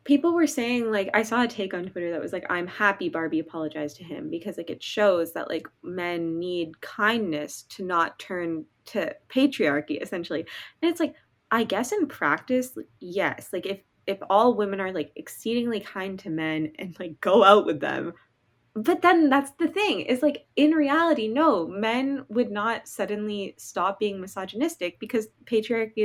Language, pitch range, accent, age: English, 180-250 Hz, American, 20-39